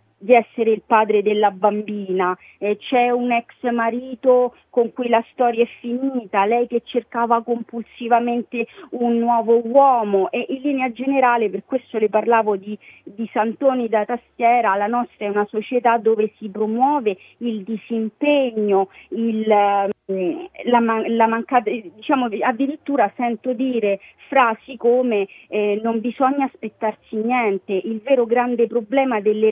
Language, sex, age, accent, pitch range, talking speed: Italian, female, 30-49, native, 215-250 Hz, 130 wpm